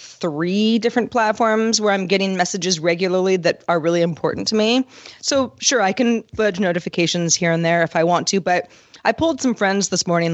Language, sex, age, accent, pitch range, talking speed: English, female, 30-49, American, 170-220 Hz, 195 wpm